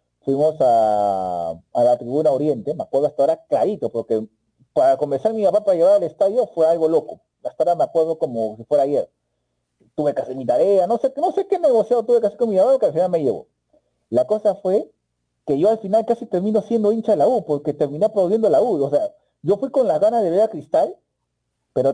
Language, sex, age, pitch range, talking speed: Spanish, male, 40-59, 135-225 Hz, 230 wpm